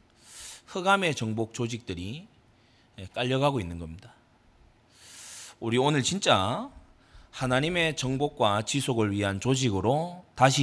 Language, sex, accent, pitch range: Korean, male, native, 95-130 Hz